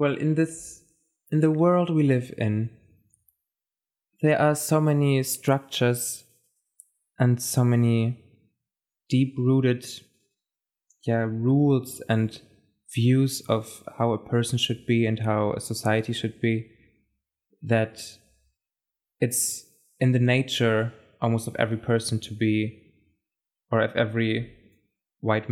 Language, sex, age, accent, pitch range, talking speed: English, male, 20-39, German, 110-130 Hz, 115 wpm